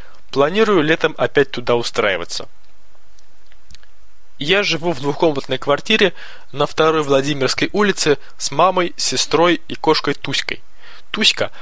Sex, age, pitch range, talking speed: male, 20-39, 135-170 Hz, 110 wpm